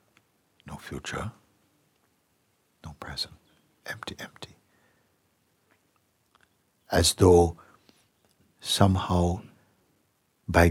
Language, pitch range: English, 85-110 Hz